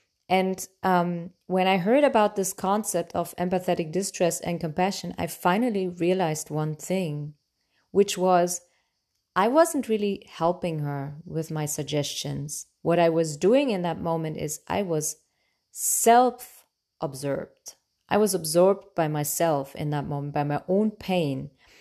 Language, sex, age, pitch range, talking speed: English, female, 30-49, 155-190 Hz, 140 wpm